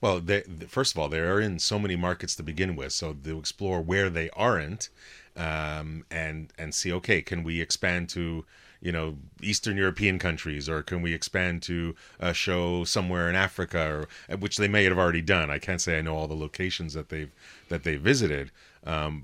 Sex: male